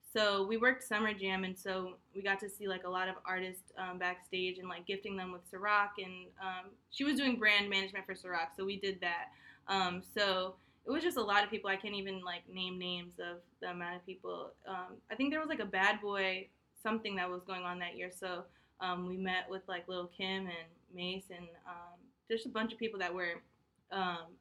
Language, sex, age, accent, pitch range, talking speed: English, female, 20-39, American, 185-205 Hz, 230 wpm